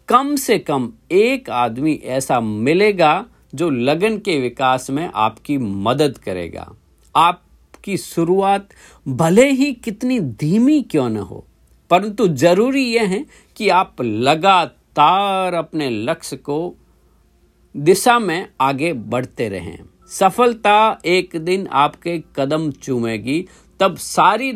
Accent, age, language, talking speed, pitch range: native, 50-69, Hindi, 115 wpm, 125-195 Hz